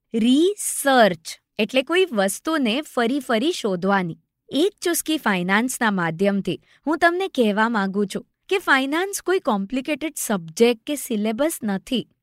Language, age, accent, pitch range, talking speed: Gujarati, 20-39, native, 205-300 Hz, 120 wpm